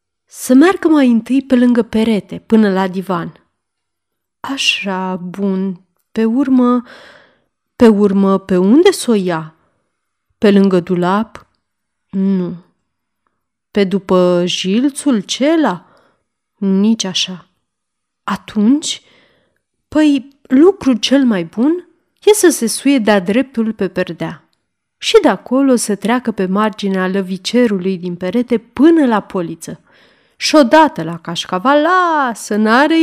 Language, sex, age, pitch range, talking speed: Romanian, female, 30-49, 190-270 Hz, 115 wpm